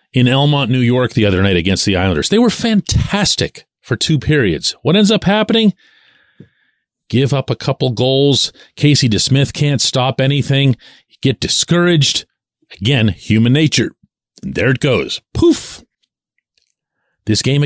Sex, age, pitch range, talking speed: male, 40-59, 110-150 Hz, 145 wpm